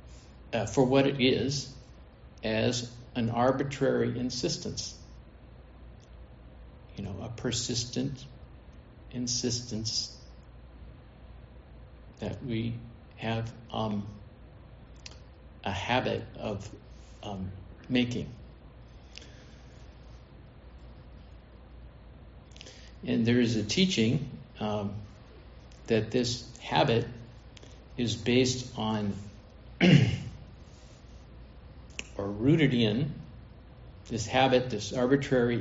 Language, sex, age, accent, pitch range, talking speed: English, male, 50-69, American, 105-125 Hz, 70 wpm